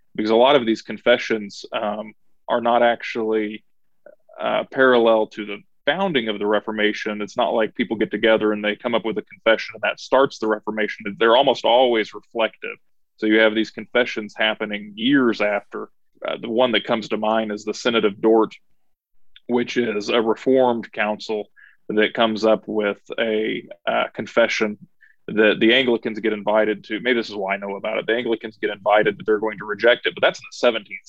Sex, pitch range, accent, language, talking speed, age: male, 105-120 Hz, American, English, 195 wpm, 20-39